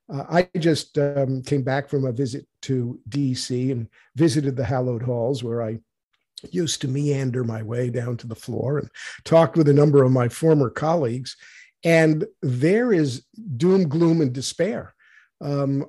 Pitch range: 130-155 Hz